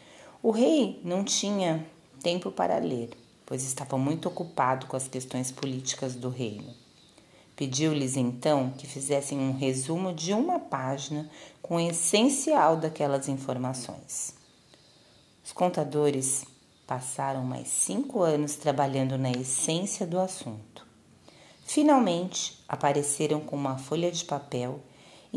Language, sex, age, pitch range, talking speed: Portuguese, female, 40-59, 130-165 Hz, 120 wpm